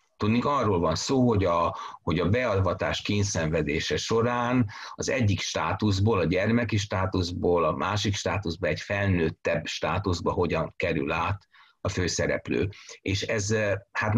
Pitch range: 90-110 Hz